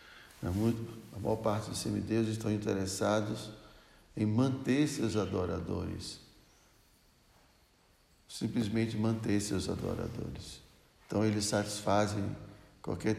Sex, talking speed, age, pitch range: male, 85 wpm, 60-79, 100-115 Hz